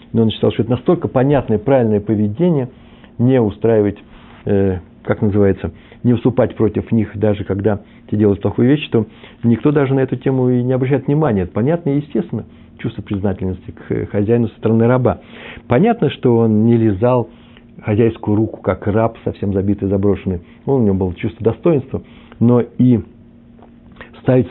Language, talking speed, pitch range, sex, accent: Russian, 155 wpm, 100-125 Hz, male, native